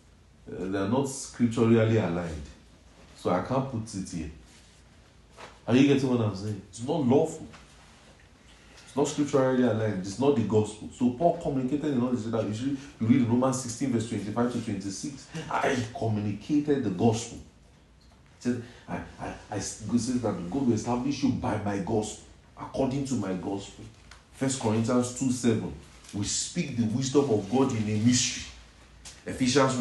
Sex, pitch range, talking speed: male, 105-130 Hz, 160 wpm